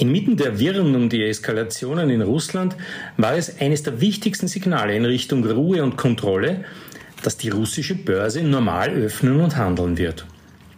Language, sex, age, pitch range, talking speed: German, male, 50-69, 120-155 Hz, 155 wpm